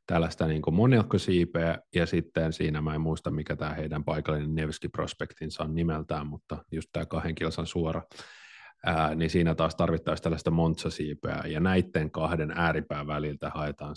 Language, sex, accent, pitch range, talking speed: Finnish, male, native, 80-90 Hz, 145 wpm